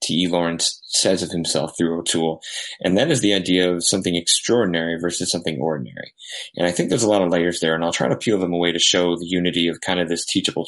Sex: male